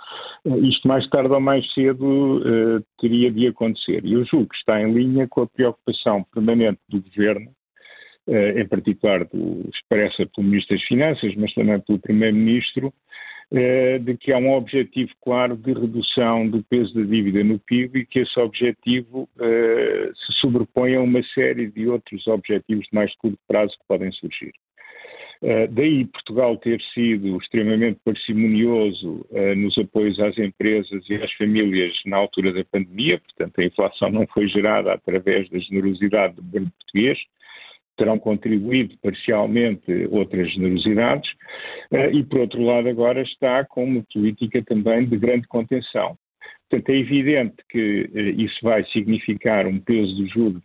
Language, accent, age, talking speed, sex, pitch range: Portuguese, Brazilian, 50-69, 145 wpm, male, 105-125 Hz